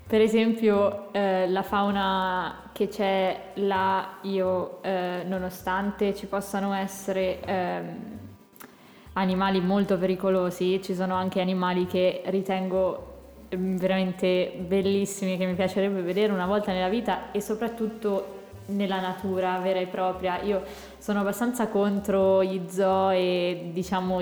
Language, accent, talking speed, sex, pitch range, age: Italian, native, 125 wpm, female, 175-195 Hz, 20-39